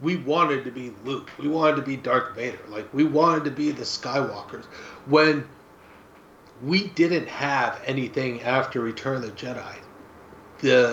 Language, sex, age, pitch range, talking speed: English, male, 30-49, 115-150 Hz, 160 wpm